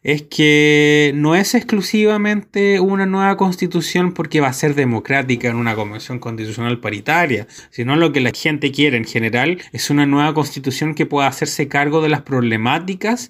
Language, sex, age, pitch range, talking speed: Spanish, male, 30-49, 125-170 Hz, 165 wpm